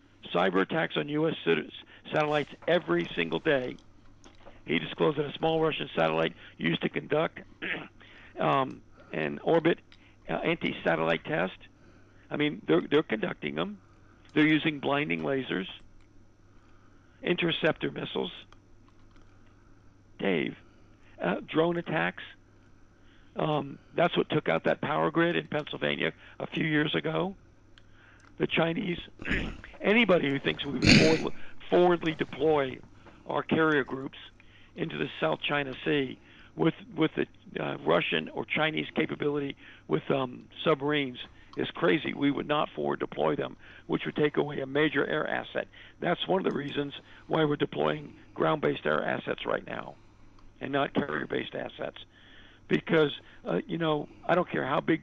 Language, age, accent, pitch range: English, 60-79, American, 100-155 Hz